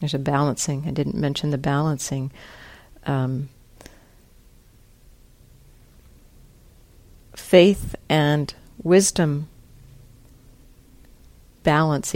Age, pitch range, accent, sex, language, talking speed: 50-69, 135-170 Hz, American, female, English, 65 wpm